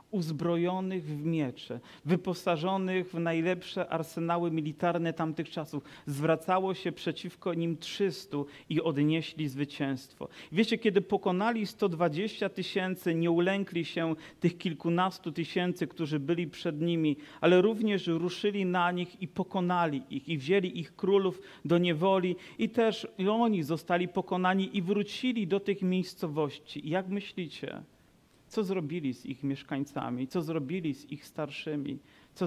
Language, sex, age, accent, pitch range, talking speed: Polish, male, 40-59, native, 150-180 Hz, 130 wpm